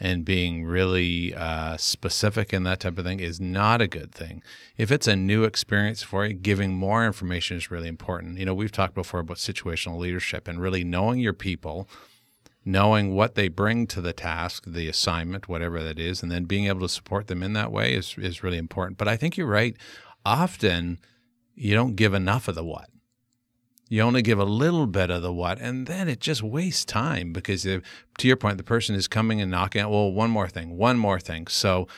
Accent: American